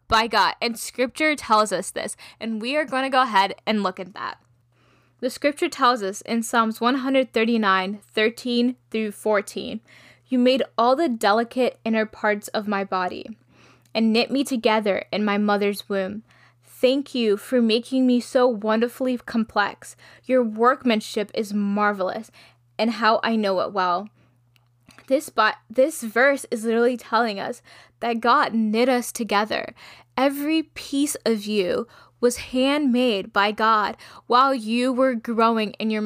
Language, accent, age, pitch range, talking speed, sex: English, American, 10-29, 210-255 Hz, 155 wpm, female